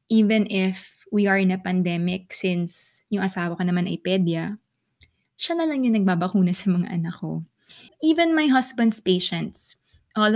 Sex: female